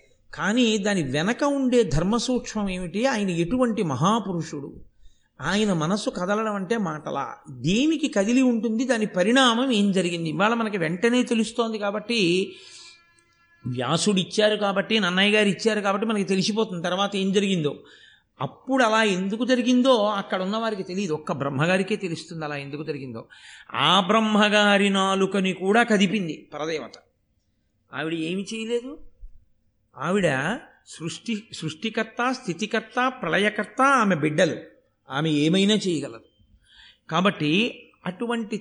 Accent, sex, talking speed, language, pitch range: native, male, 110 wpm, Telugu, 165-225 Hz